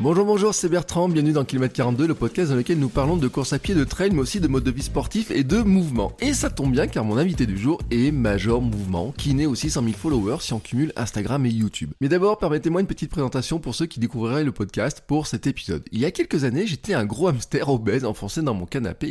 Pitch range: 115-155 Hz